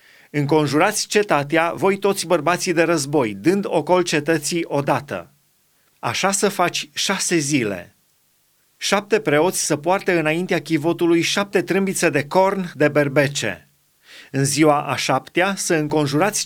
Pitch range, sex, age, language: 145-185 Hz, male, 30-49, Romanian